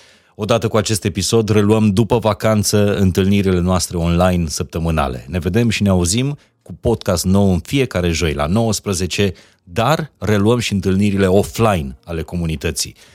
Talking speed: 140 wpm